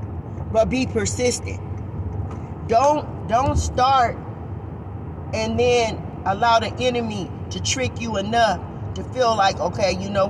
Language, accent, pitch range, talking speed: English, American, 95-115 Hz, 120 wpm